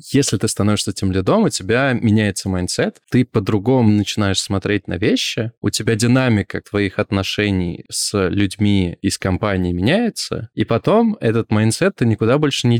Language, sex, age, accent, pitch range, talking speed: Russian, male, 20-39, native, 100-120 Hz, 155 wpm